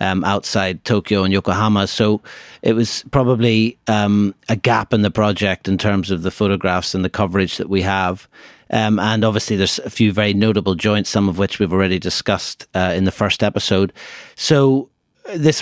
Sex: male